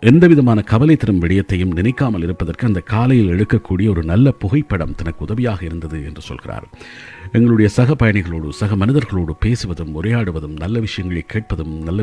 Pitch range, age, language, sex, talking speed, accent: 85-120 Hz, 50-69, Tamil, male, 140 wpm, native